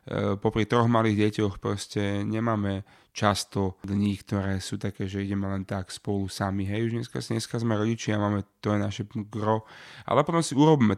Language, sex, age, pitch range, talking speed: Slovak, male, 30-49, 100-115 Hz, 175 wpm